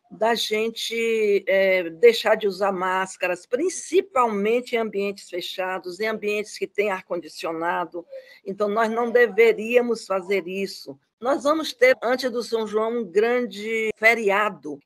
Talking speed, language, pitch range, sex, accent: 125 wpm, Portuguese, 195-245 Hz, female, Brazilian